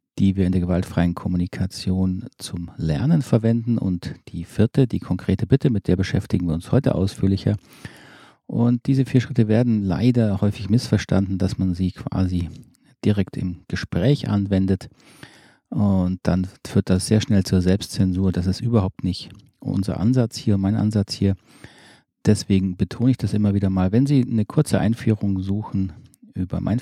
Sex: male